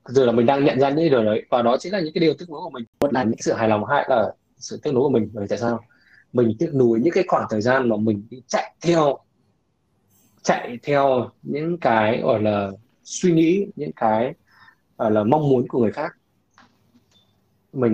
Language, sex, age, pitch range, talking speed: Vietnamese, male, 20-39, 110-140 Hz, 220 wpm